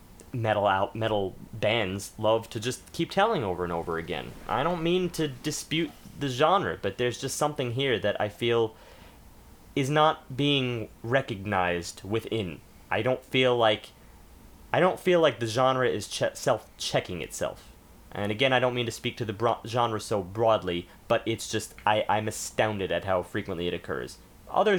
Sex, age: male, 30-49